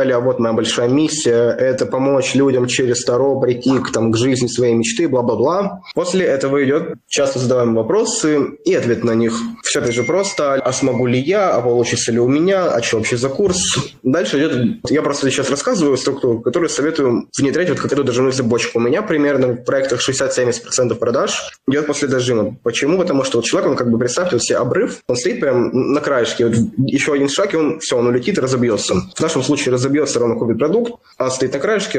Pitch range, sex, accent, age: 120-145 Hz, male, native, 20-39